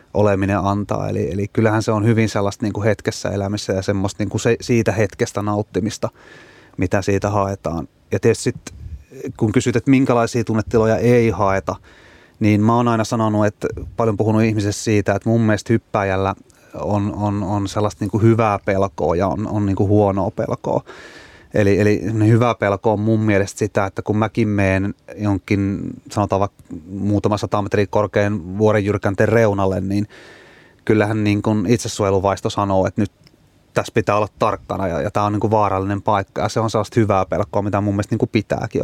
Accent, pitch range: native, 100-110 Hz